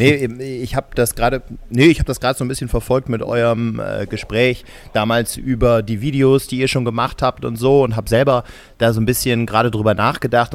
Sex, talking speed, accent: male, 205 wpm, German